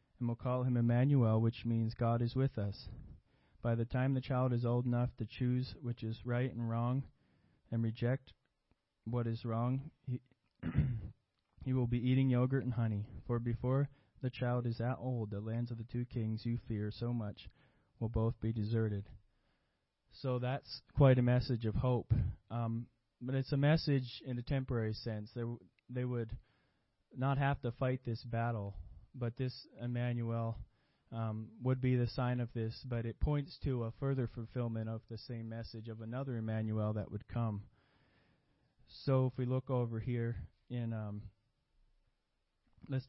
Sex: male